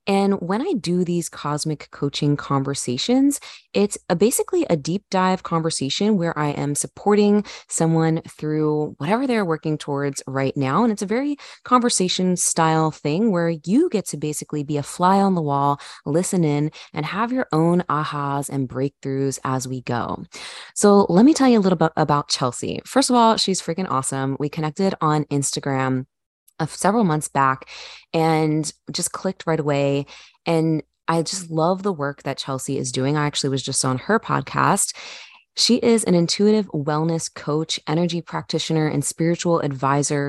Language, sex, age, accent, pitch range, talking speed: English, female, 20-39, American, 140-180 Hz, 170 wpm